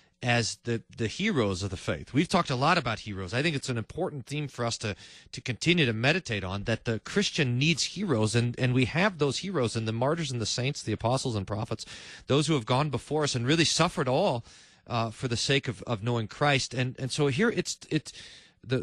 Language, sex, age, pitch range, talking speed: English, male, 40-59, 125-185 Hz, 235 wpm